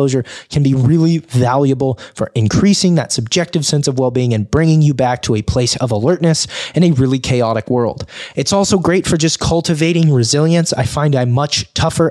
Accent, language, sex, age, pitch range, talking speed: American, English, male, 20-39, 120-160 Hz, 190 wpm